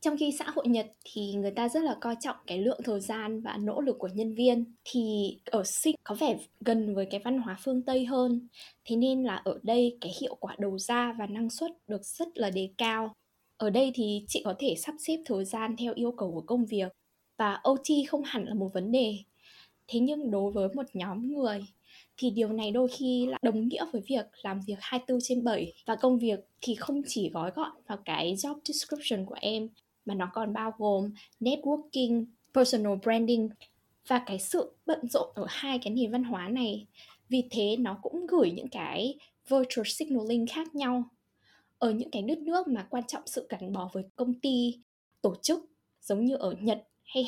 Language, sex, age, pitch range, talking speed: Vietnamese, female, 10-29, 210-260 Hz, 210 wpm